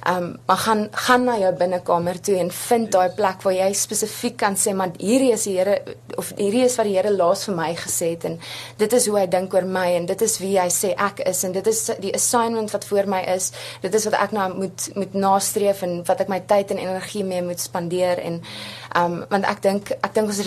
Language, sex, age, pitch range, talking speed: English, female, 20-39, 180-205 Hz, 245 wpm